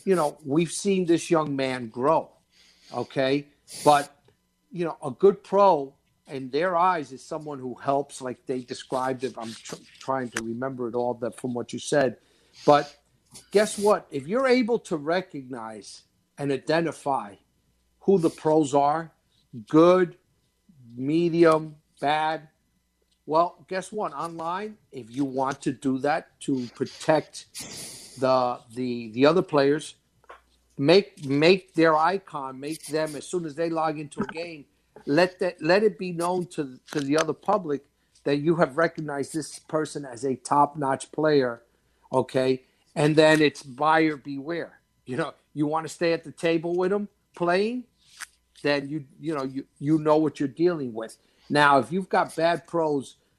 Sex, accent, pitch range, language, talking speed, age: male, American, 135-170 Hz, English, 160 wpm, 50-69